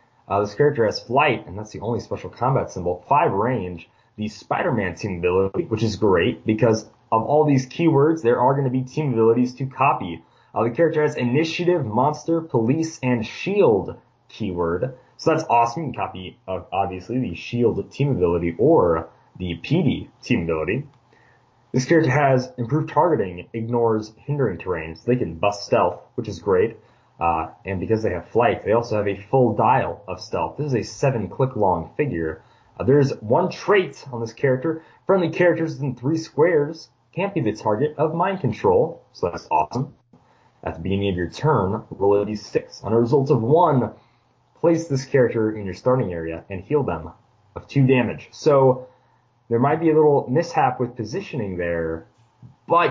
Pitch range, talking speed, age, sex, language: 105-145 Hz, 180 wpm, 20-39, male, English